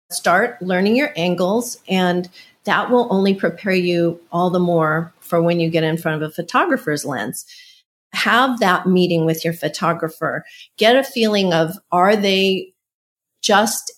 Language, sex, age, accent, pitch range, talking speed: English, female, 40-59, American, 170-225 Hz, 155 wpm